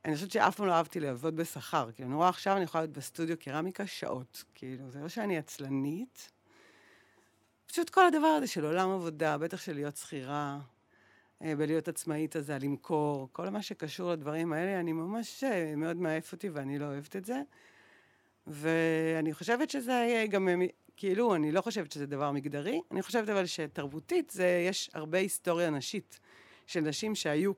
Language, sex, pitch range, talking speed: Hebrew, female, 145-185 Hz, 165 wpm